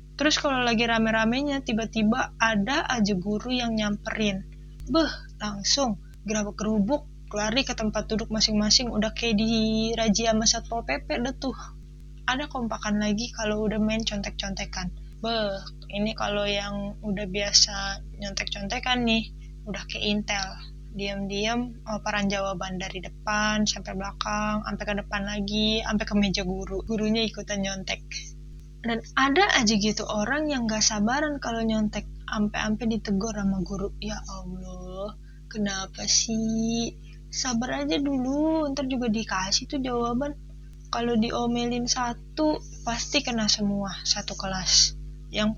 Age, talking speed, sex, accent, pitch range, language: 20-39, 130 wpm, female, native, 200-230 Hz, Indonesian